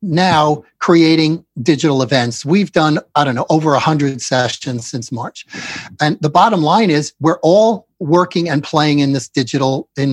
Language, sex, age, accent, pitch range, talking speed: English, male, 50-69, American, 140-185 Hz, 170 wpm